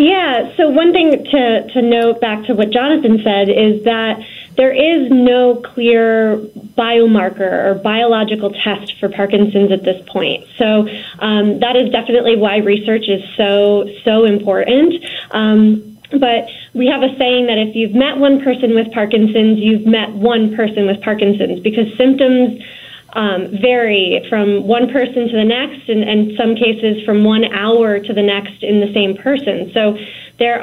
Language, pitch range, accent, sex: English, 205-235 Hz, American, female